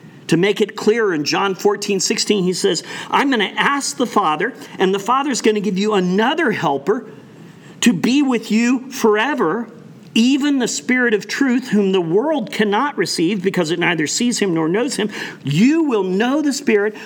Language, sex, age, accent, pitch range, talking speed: English, male, 40-59, American, 155-220 Hz, 190 wpm